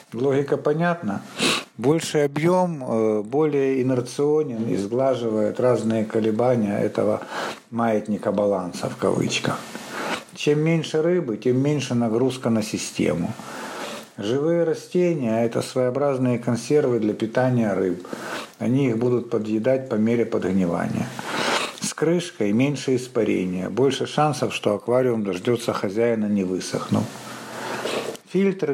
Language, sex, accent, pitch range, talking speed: Russian, male, native, 110-145 Hz, 110 wpm